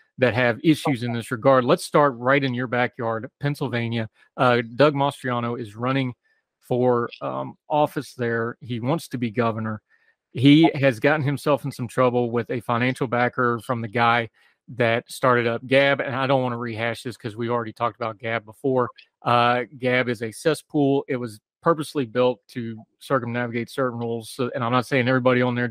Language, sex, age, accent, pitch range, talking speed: English, male, 30-49, American, 120-135 Hz, 185 wpm